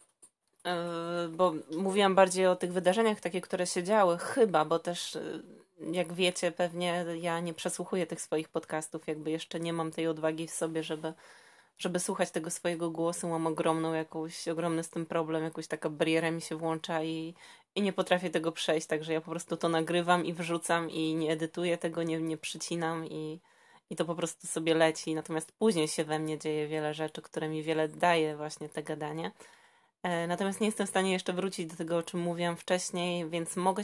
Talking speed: 190 wpm